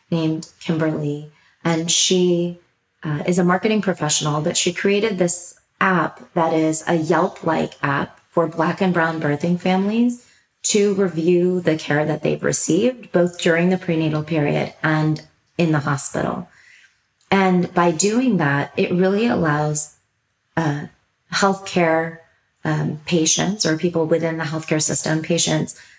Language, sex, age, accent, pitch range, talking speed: English, female, 30-49, American, 150-180 Hz, 135 wpm